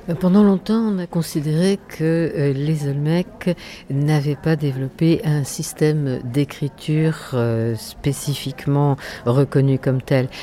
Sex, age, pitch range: female, 60-79, 135-165 Hz